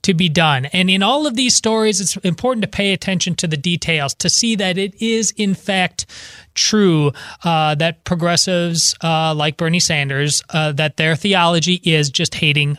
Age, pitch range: 30-49, 165-215 Hz